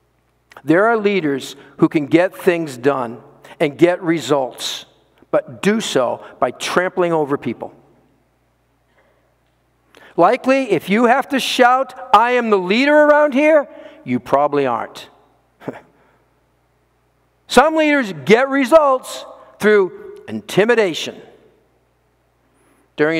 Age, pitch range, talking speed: 50-69, 155-220 Hz, 105 wpm